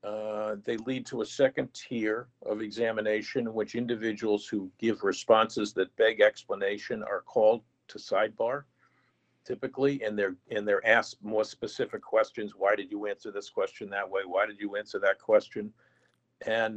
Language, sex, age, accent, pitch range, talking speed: English, male, 50-69, American, 110-180 Hz, 165 wpm